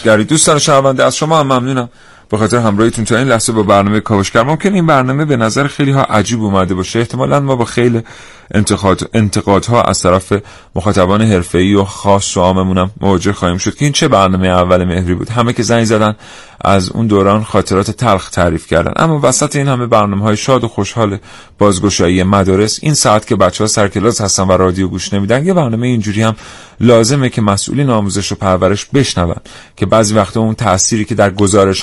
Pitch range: 95-115 Hz